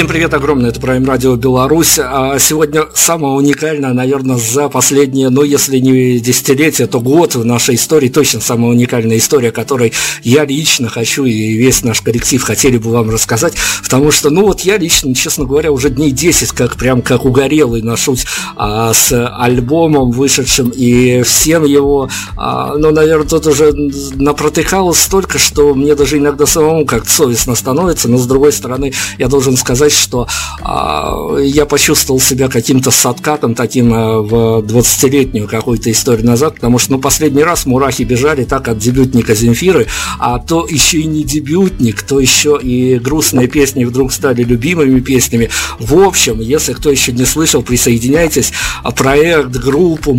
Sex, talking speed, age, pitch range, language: male, 160 wpm, 50-69, 120-145 Hz, Russian